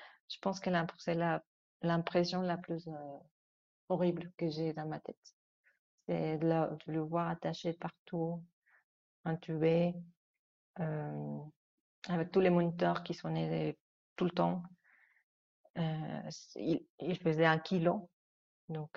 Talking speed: 130 wpm